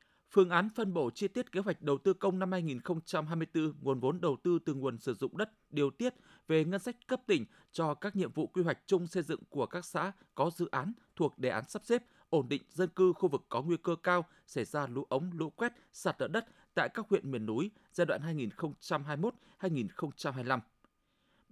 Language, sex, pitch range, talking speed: Vietnamese, male, 150-195 Hz, 210 wpm